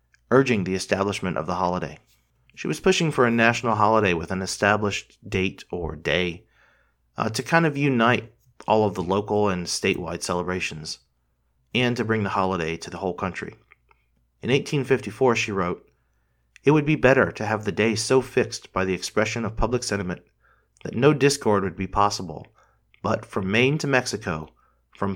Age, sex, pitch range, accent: 40-59, male, 90-125 Hz, American